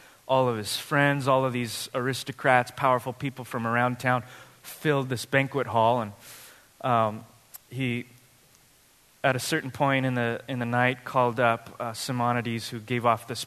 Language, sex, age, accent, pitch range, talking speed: English, male, 20-39, American, 120-145 Hz, 165 wpm